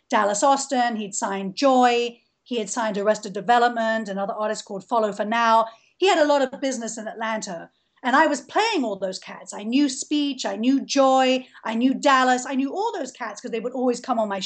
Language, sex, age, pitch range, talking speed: English, female, 40-59, 235-285 Hz, 215 wpm